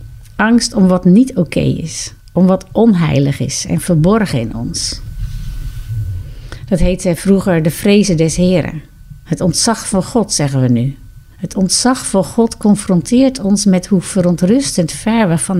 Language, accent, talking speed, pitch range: Dutch, Dutch, 160 wpm, 125-200 Hz